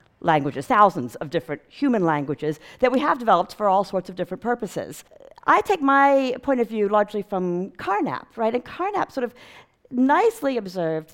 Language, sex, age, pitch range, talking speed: English, female, 50-69, 170-255 Hz, 170 wpm